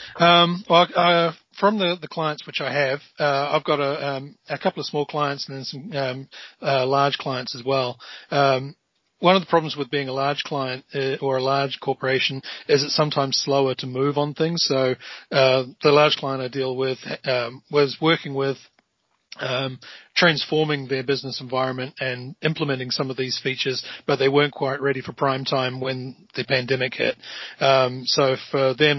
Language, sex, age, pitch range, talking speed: English, male, 30-49, 130-145 Hz, 185 wpm